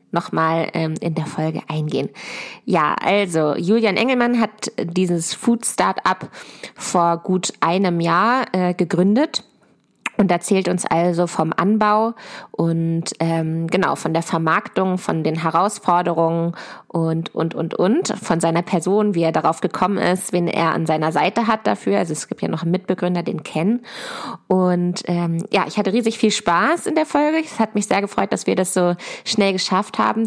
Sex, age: female, 20-39